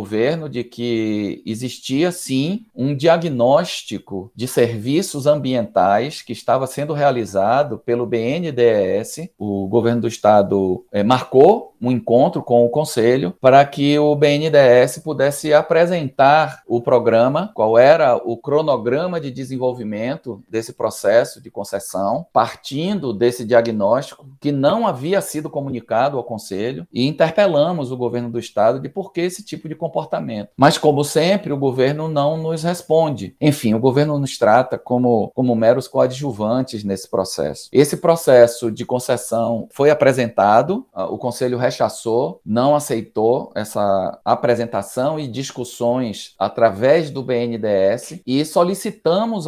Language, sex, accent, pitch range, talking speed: Portuguese, male, Brazilian, 120-155 Hz, 130 wpm